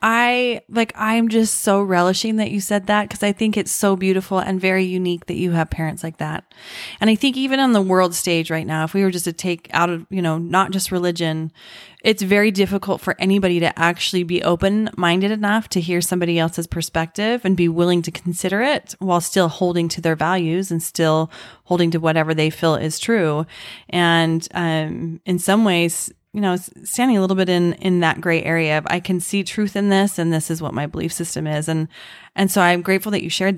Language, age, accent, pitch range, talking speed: English, 20-39, American, 165-195 Hz, 220 wpm